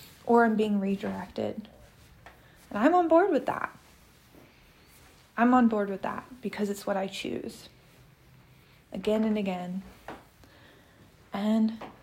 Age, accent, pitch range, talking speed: 20-39, American, 195-225 Hz, 120 wpm